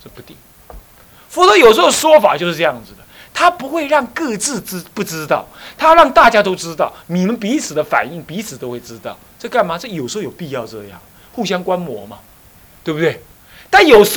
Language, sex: Chinese, male